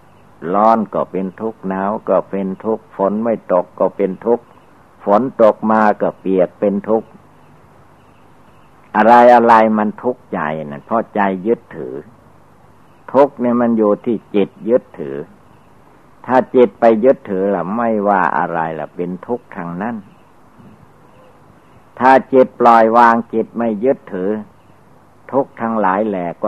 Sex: male